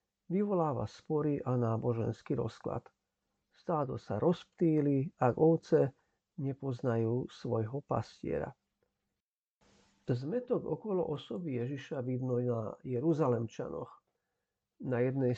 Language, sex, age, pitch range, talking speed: Slovak, male, 50-69, 125-170 Hz, 85 wpm